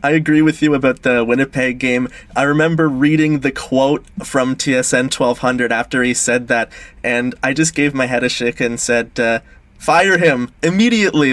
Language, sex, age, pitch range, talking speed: English, male, 20-39, 120-140 Hz, 180 wpm